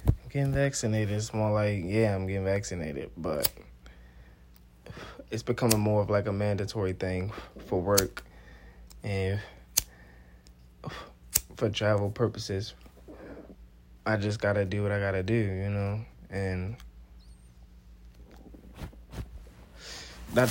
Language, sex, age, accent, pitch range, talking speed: English, male, 20-39, American, 75-110 Hz, 105 wpm